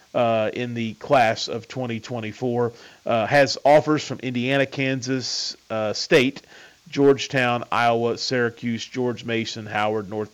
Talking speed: 120 wpm